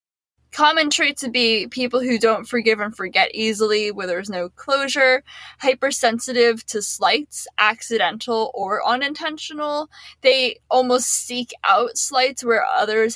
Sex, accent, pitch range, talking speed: female, American, 205-255 Hz, 130 wpm